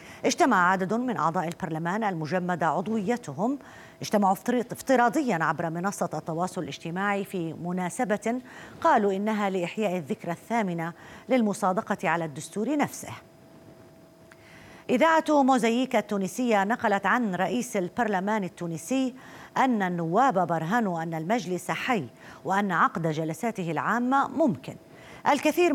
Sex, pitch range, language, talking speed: female, 170-230 Hz, Arabic, 105 wpm